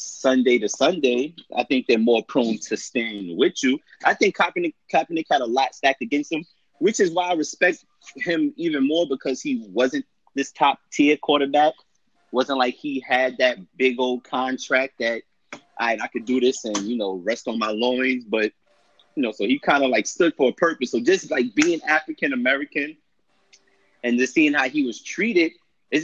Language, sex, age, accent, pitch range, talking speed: English, male, 30-49, American, 125-170 Hz, 195 wpm